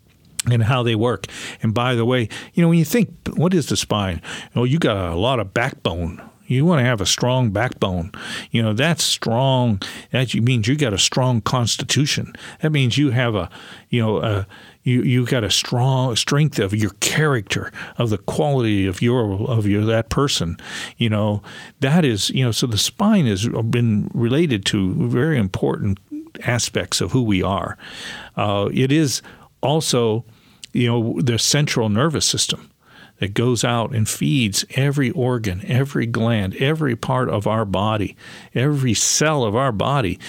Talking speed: 175 wpm